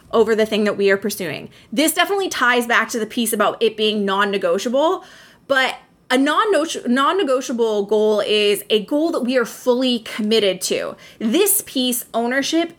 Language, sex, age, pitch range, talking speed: English, female, 20-39, 215-280 Hz, 160 wpm